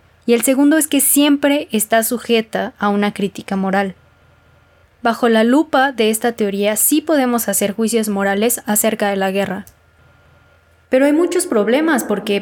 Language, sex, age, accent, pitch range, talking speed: Spanish, female, 20-39, Mexican, 200-240 Hz, 155 wpm